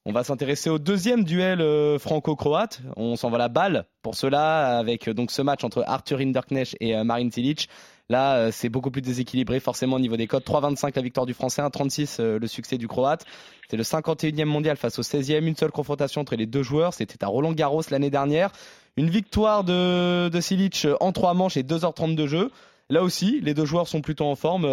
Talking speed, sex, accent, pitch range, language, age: 205 wpm, male, French, 135-175 Hz, French, 20-39